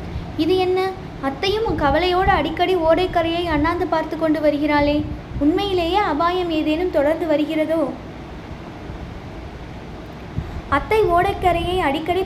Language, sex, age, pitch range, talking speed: Tamil, female, 20-39, 300-365 Hz, 90 wpm